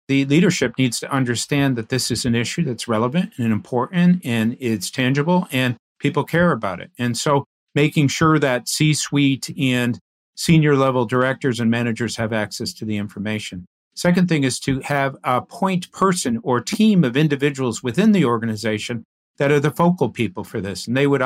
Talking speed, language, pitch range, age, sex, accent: 180 wpm, English, 120-150 Hz, 50-69, male, American